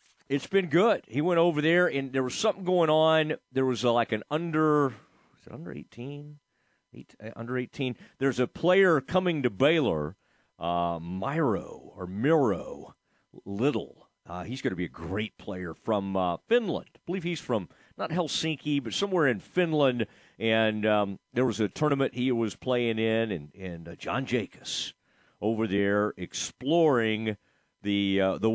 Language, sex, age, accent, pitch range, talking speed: English, male, 40-59, American, 105-160 Hz, 160 wpm